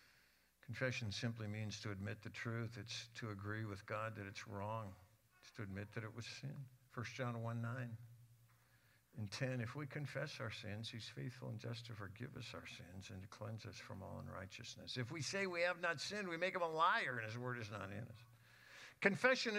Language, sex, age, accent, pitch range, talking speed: English, male, 60-79, American, 115-150 Hz, 210 wpm